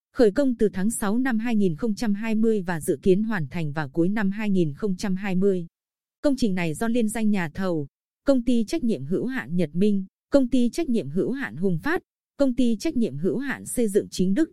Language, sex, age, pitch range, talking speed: Vietnamese, female, 20-39, 185-240 Hz, 205 wpm